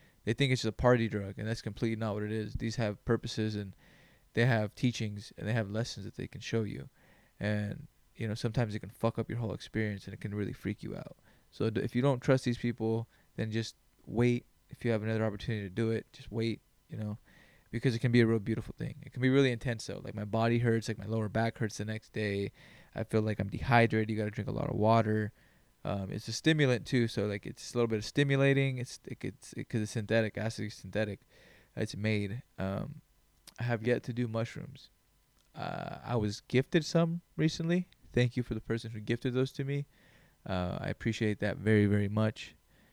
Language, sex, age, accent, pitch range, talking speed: English, male, 20-39, American, 110-130 Hz, 225 wpm